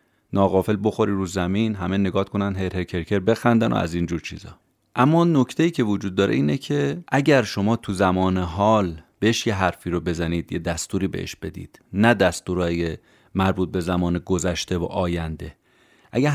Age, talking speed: 30-49, 165 wpm